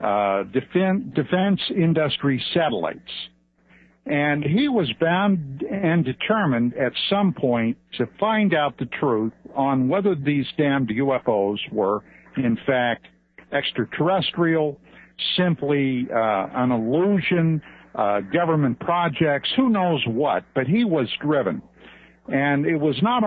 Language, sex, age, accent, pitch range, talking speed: English, male, 60-79, American, 125-175 Hz, 115 wpm